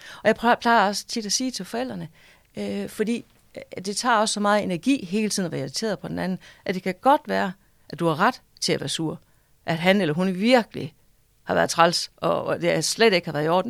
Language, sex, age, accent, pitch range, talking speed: Danish, female, 40-59, native, 170-225 Hz, 230 wpm